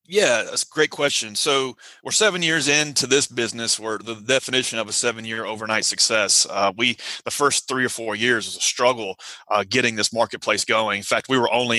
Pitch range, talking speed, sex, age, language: 115-140 Hz, 215 wpm, male, 30-49, English